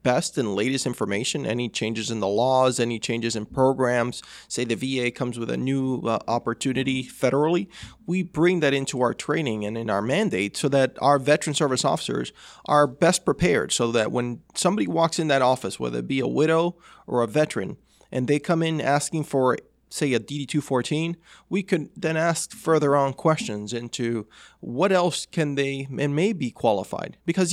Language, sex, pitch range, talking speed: English, male, 125-160 Hz, 185 wpm